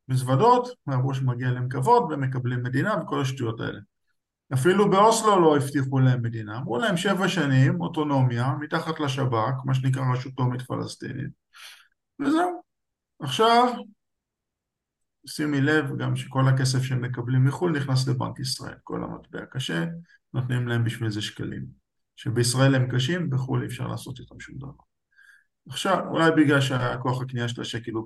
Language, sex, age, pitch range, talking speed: Hebrew, male, 50-69, 120-150 Hz, 145 wpm